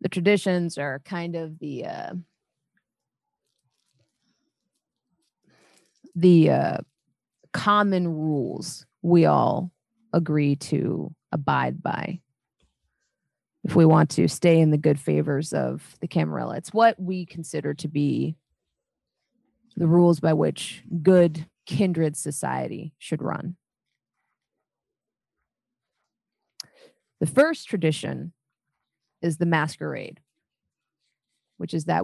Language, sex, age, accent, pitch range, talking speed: English, female, 30-49, American, 155-180 Hz, 100 wpm